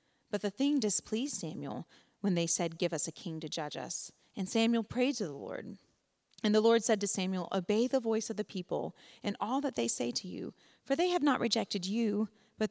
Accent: American